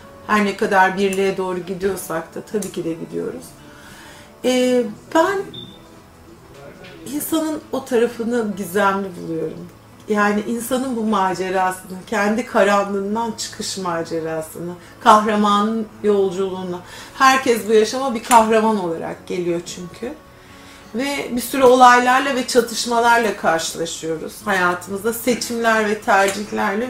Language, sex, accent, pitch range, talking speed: Turkish, female, native, 190-245 Hz, 105 wpm